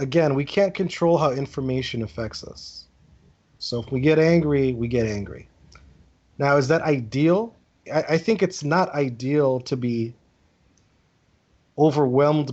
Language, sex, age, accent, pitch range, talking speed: English, male, 30-49, American, 110-145 Hz, 140 wpm